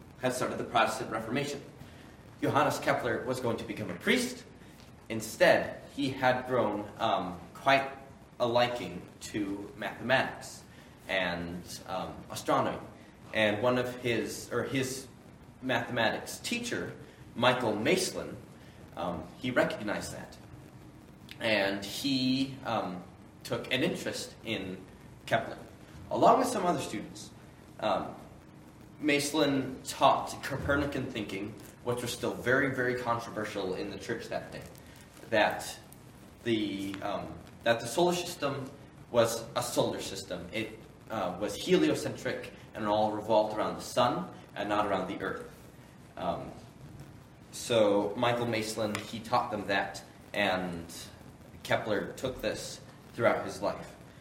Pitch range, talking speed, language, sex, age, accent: 105-135 Hz, 120 wpm, English, male, 20-39, American